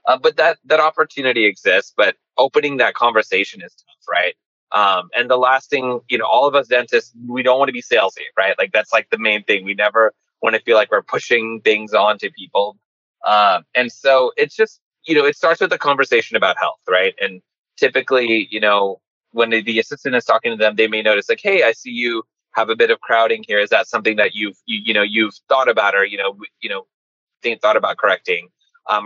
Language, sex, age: English, male, 20-39